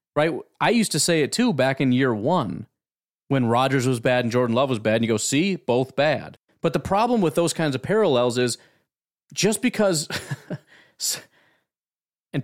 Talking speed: 185 wpm